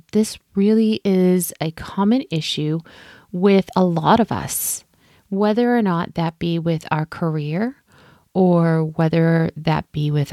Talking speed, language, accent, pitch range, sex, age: 140 wpm, English, American, 160-215 Hz, female, 30-49